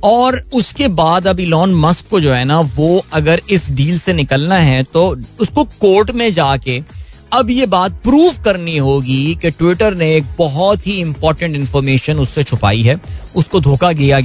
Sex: male